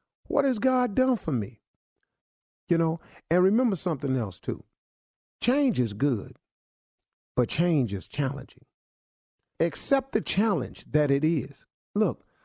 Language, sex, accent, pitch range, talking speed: English, male, American, 120-180 Hz, 130 wpm